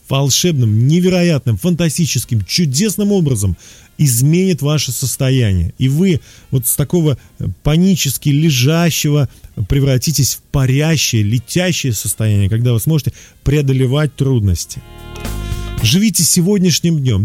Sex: male